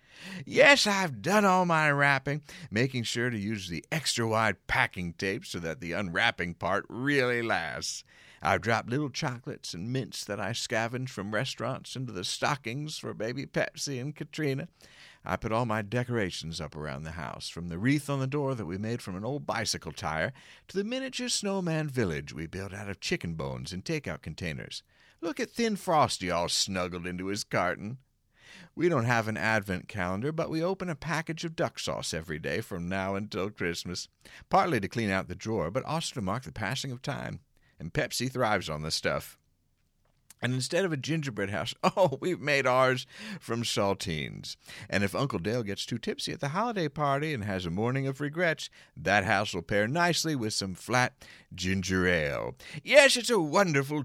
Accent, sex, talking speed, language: American, male, 190 wpm, English